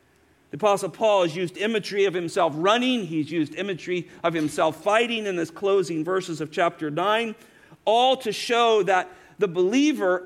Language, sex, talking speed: English, male, 165 wpm